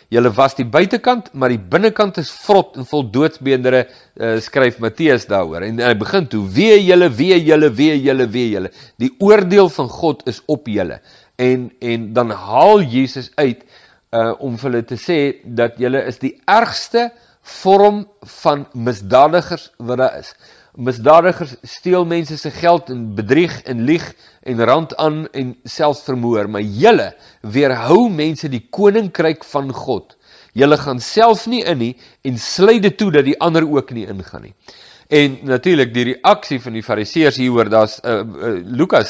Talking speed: 185 wpm